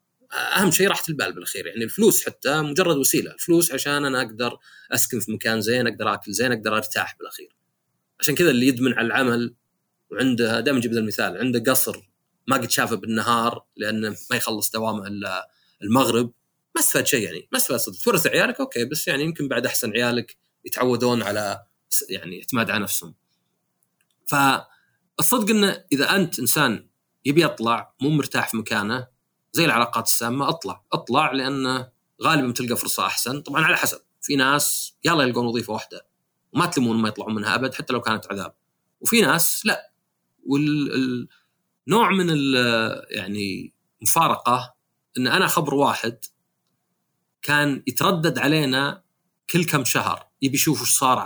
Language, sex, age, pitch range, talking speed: Arabic, male, 30-49, 115-150 Hz, 150 wpm